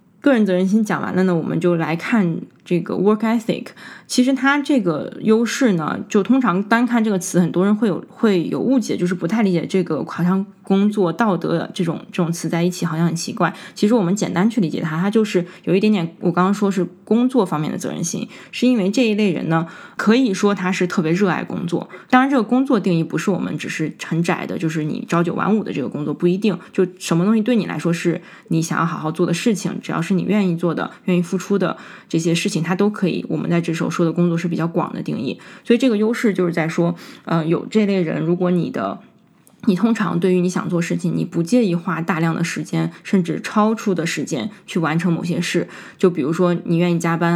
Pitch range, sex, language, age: 170-210 Hz, female, Chinese, 20-39